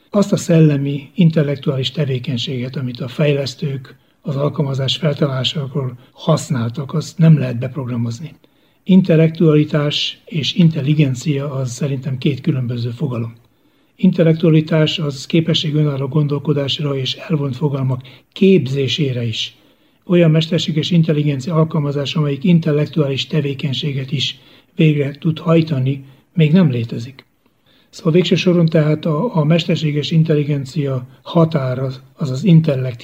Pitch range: 135-160 Hz